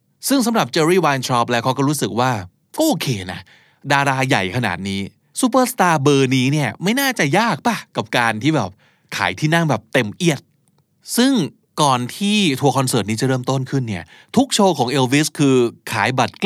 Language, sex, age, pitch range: Thai, male, 20-39, 115-160 Hz